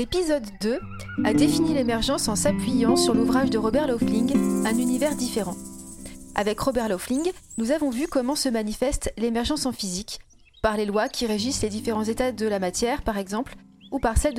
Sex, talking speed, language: female, 180 wpm, French